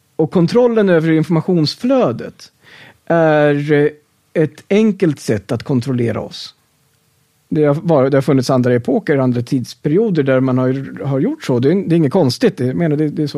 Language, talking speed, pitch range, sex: Swedish, 135 wpm, 130-180 Hz, male